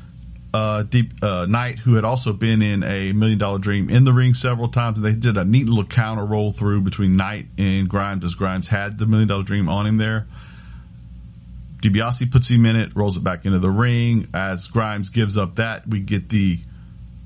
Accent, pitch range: American, 90-115 Hz